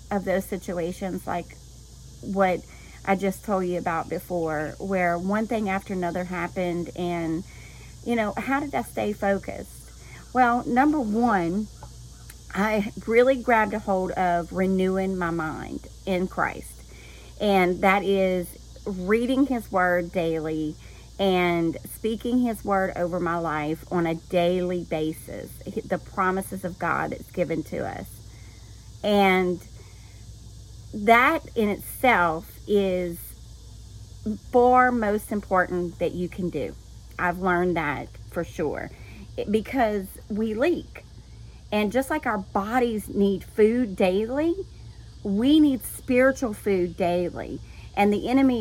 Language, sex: English, female